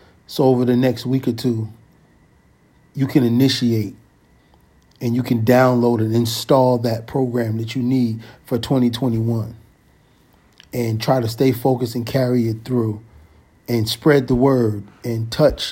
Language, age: English, 40-59